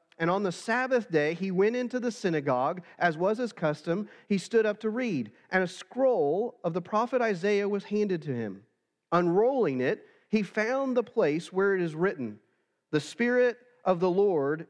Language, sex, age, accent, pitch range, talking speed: English, male, 40-59, American, 155-210 Hz, 185 wpm